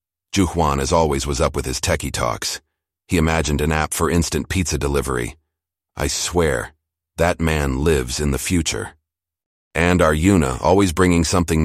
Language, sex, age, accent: English, male, 40-59, American